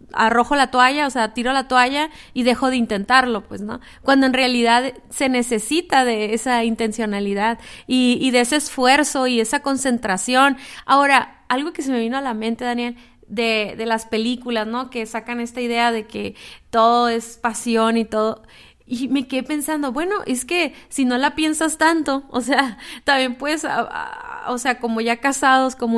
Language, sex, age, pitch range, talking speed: Spanish, female, 30-49, 240-285 Hz, 180 wpm